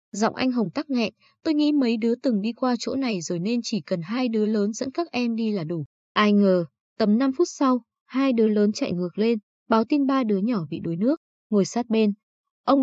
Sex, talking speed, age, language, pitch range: female, 240 wpm, 20-39, Vietnamese, 195-260 Hz